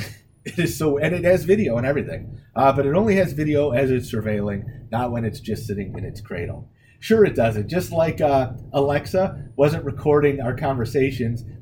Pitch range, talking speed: 115-145 Hz, 190 wpm